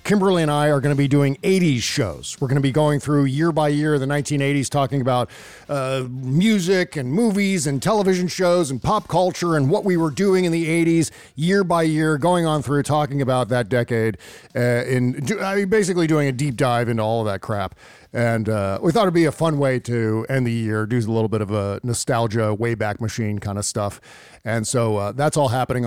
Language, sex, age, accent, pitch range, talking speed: English, male, 40-59, American, 120-170 Hz, 220 wpm